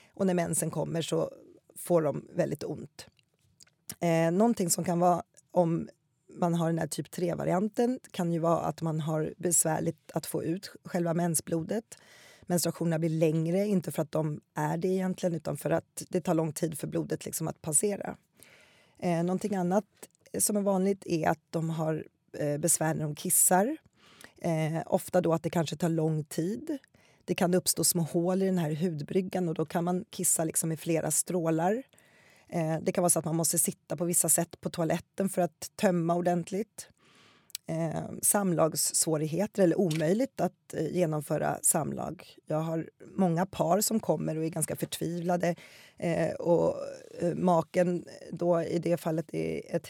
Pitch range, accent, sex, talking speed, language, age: 160-185 Hz, native, female, 160 wpm, Swedish, 30-49